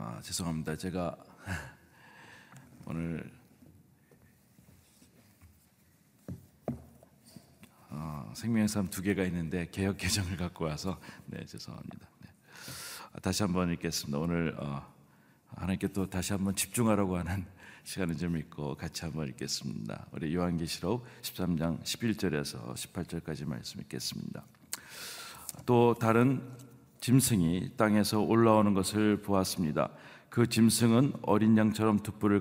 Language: Korean